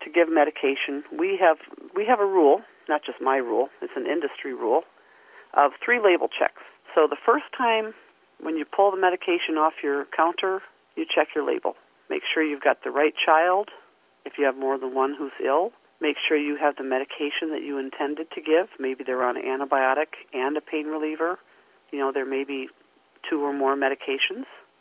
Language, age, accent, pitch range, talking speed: English, 40-59, American, 140-235 Hz, 195 wpm